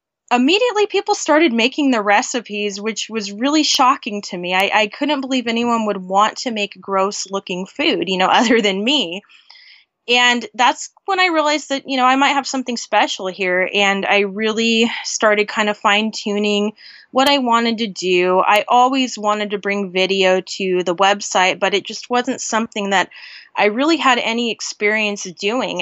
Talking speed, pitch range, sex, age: 180 wpm, 195-245 Hz, female, 20-39